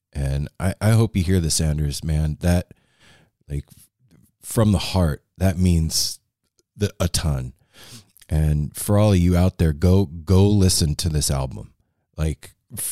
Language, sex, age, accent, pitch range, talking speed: English, male, 40-59, American, 75-95 Hz, 150 wpm